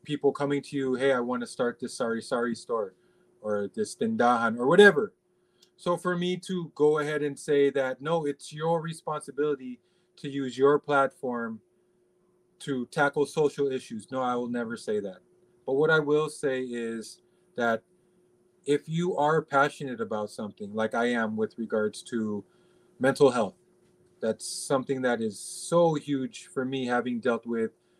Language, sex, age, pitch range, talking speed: Filipino, male, 30-49, 125-180 Hz, 165 wpm